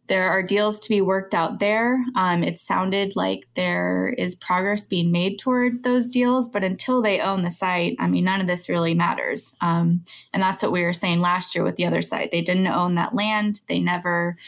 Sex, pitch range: female, 175-210 Hz